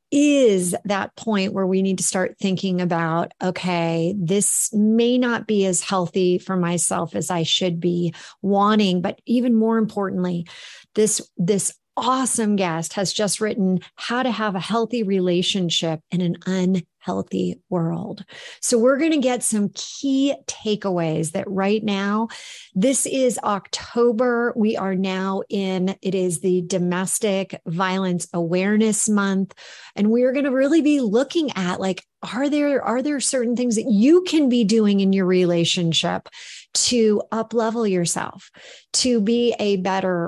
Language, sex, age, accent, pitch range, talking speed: English, female, 40-59, American, 180-225 Hz, 150 wpm